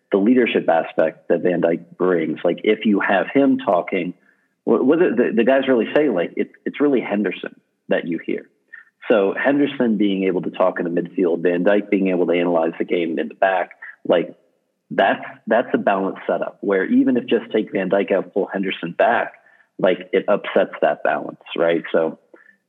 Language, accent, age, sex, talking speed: English, American, 40-59, male, 190 wpm